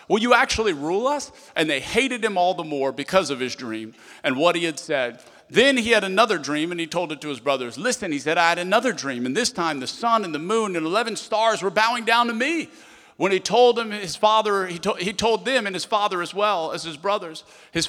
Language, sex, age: English, male, 50-69